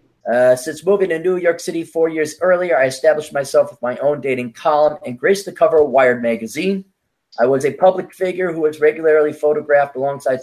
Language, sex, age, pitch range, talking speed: English, male, 30-49, 130-160 Hz, 200 wpm